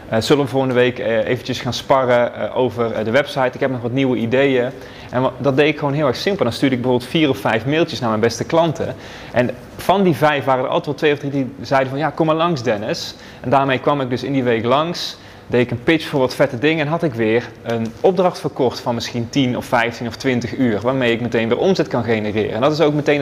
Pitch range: 110-135 Hz